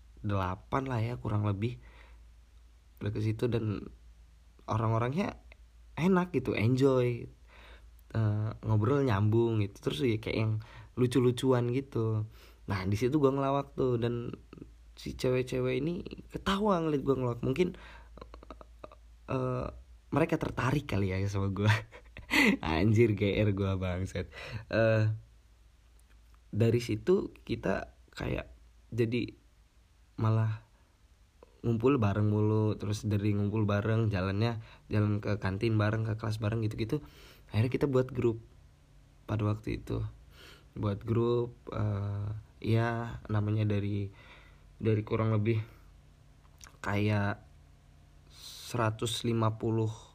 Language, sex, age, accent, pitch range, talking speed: Indonesian, male, 20-39, native, 95-120 Hz, 105 wpm